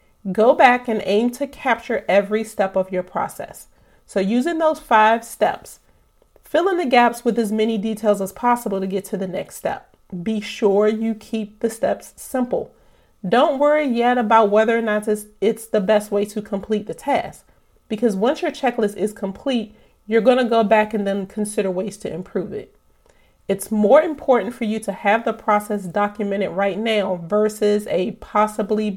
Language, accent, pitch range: English, American, 210-245 Hz